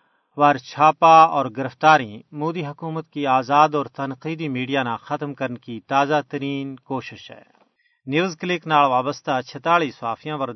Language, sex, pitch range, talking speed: Urdu, male, 130-155 Hz, 135 wpm